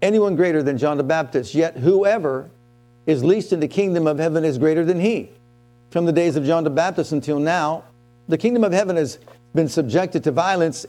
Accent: American